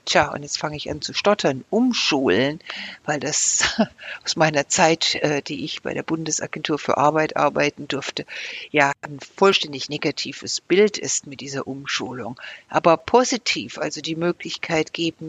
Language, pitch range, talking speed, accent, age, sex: German, 160-195 Hz, 150 wpm, German, 60-79, female